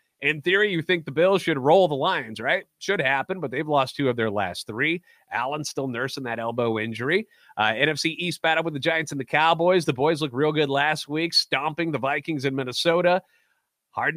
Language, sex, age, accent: English, male, 30-49, American